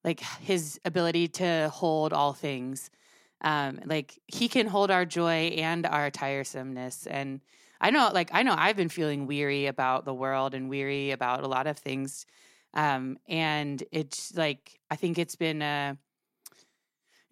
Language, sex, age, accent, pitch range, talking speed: English, female, 20-39, American, 140-170 Hz, 165 wpm